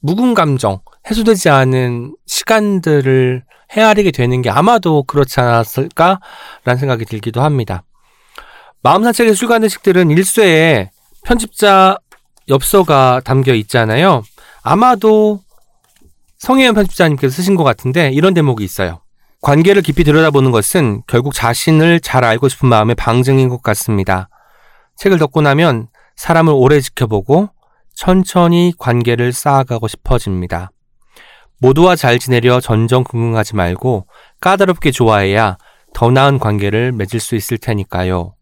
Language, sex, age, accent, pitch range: Korean, male, 40-59, native, 120-175 Hz